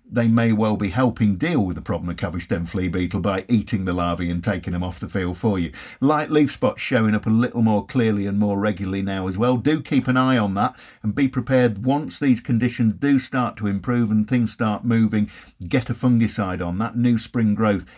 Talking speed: 230 wpm